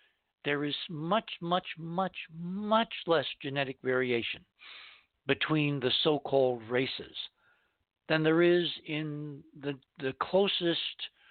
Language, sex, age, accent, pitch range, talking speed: English, male, 60-79, American, 130-165 Hz, 105 wpm